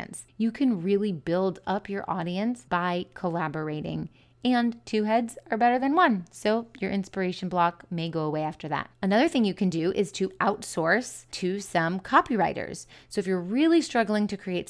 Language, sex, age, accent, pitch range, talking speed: English, female, 30-49, American, 175-225 Hz, 175 wpm